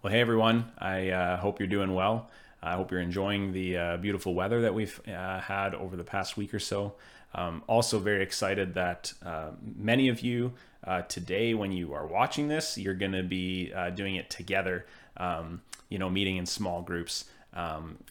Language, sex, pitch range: English, male, 90-105 Hz